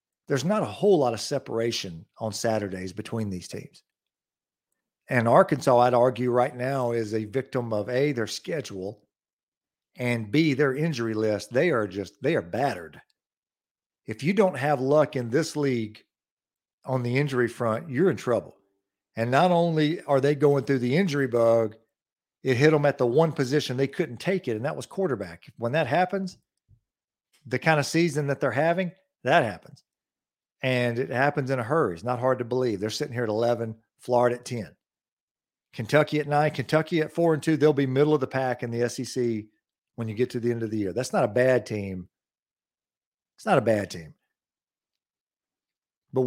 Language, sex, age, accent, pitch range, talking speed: English, male, 50-69, American, 115-145 Hz, 185 wpm